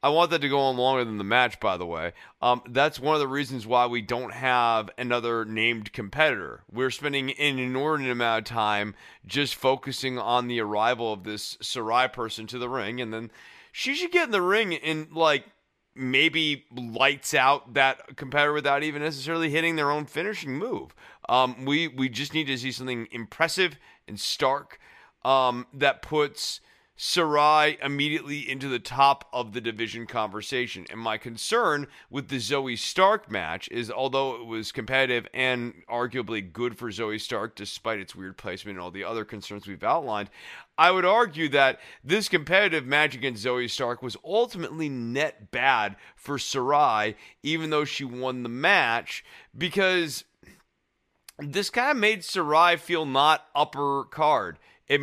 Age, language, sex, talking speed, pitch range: 30-49, English, male, 170 wpm, 120-150 Hz